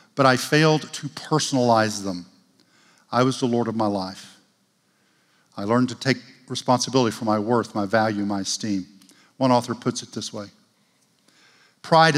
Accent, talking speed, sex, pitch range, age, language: American, 160 wpm, male, 105-130 Hz, 50-69, English